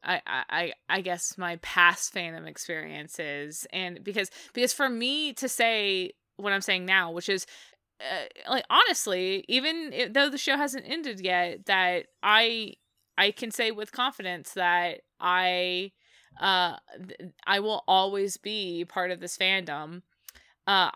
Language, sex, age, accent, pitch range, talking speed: English, female, 20-39, American, 180-220 Hz, 150 wpm